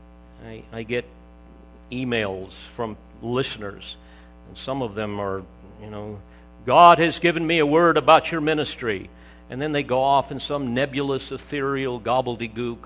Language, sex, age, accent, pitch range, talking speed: English, male, 50-69, American, 105-150 Hz, 145 wpm